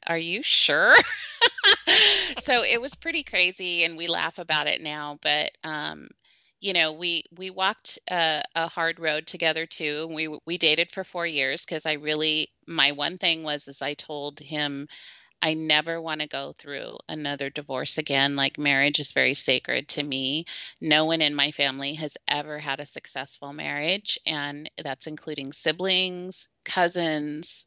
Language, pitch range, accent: English, 150-175 Hz, American